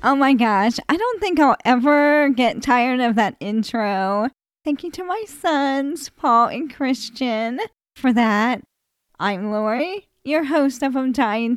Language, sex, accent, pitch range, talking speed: English, female, American, 210-265 Hz, 155 wpm